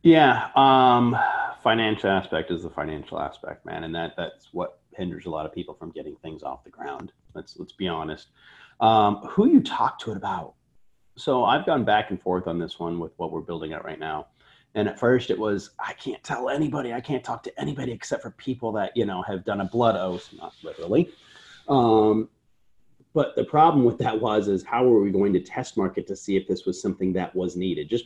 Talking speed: 220 wpm